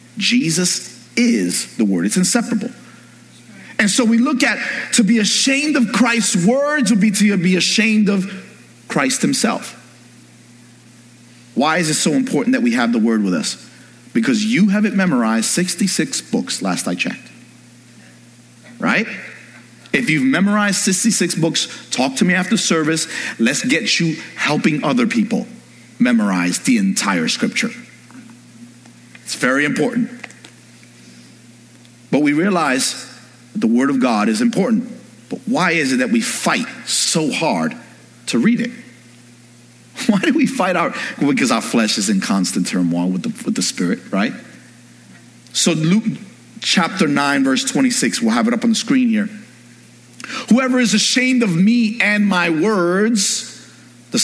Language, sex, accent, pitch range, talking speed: English, male, American, 165-240 Hz, 150 wpm